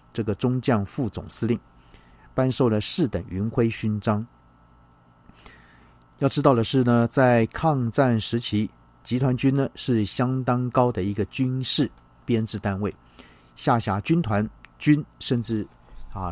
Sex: male